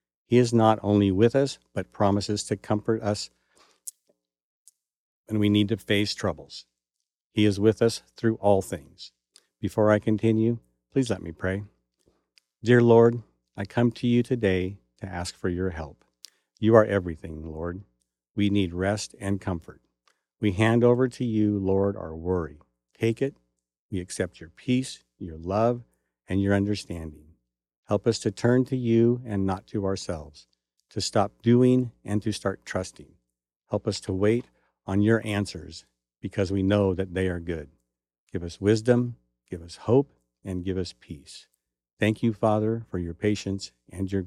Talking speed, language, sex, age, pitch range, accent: 165 wpm, English, male, 50-69, 80-110 Hz, American